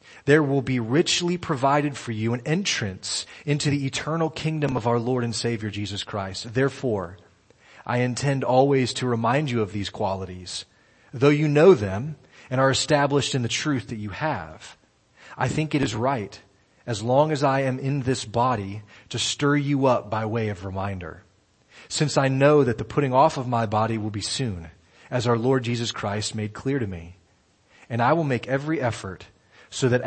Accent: American